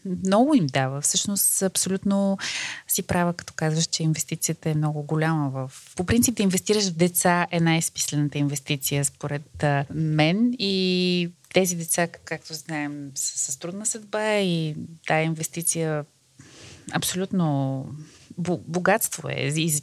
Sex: female